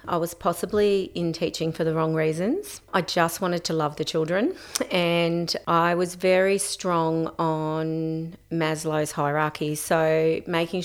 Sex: female